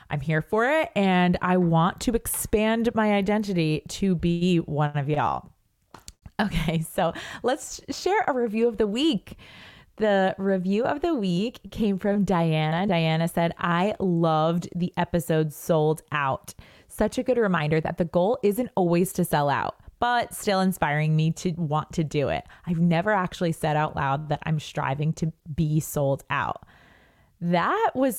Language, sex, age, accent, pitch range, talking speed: English, female, 20-39, American, 155-205 Hz, 165 wpm